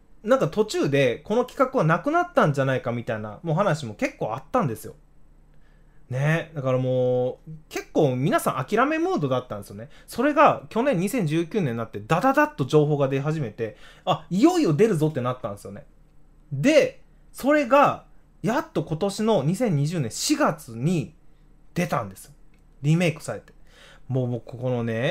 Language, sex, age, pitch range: Japanese, male, 20-39, 120-175 Hz